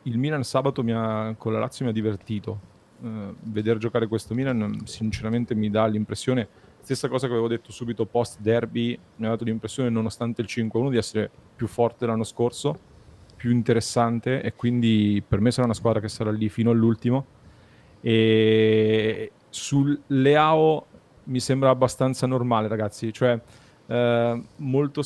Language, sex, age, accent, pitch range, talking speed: Italian, male, 30-49, native, 110-125 Hz, 150 wpm